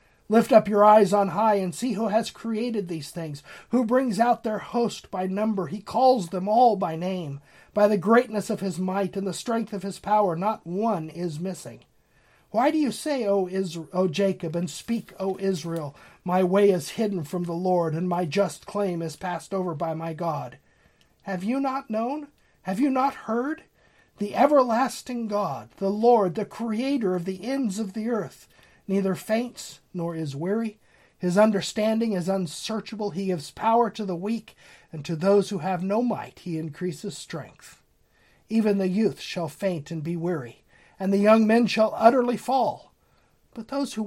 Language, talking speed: English, 185 wpm